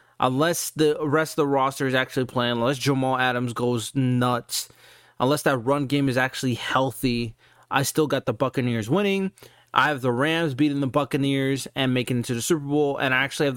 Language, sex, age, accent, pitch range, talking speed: English, male, 20-39, American, 125-150 Hz, 200 wpm